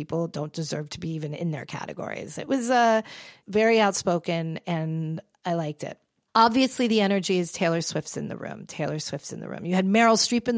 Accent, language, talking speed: American, English, 215 wpm